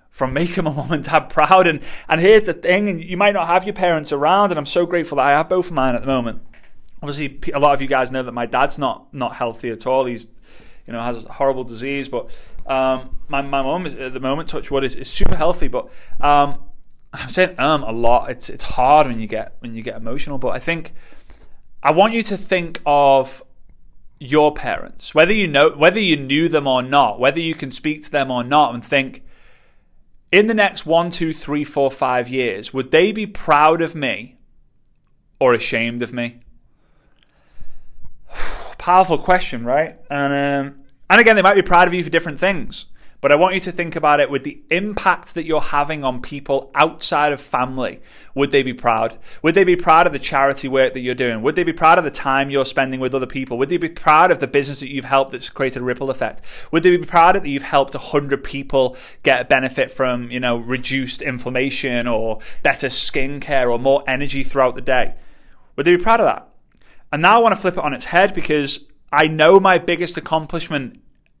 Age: 30-49